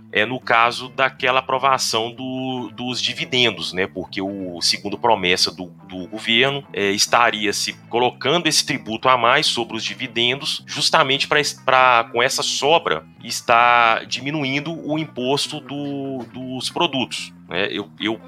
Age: 30-49